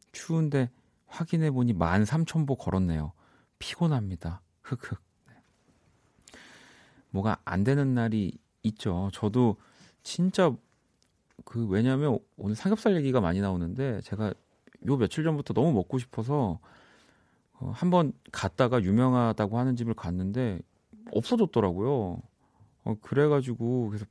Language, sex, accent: Korean, male, native